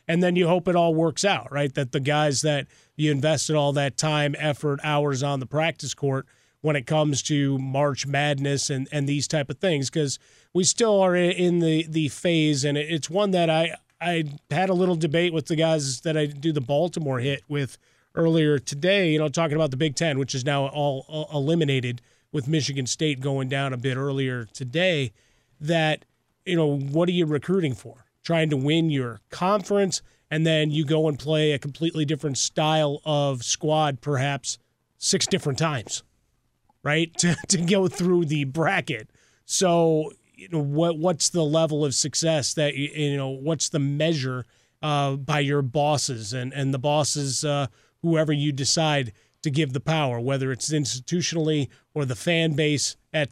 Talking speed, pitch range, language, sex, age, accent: 185 wpm, 140-160 Hz, English, male, 30-49, American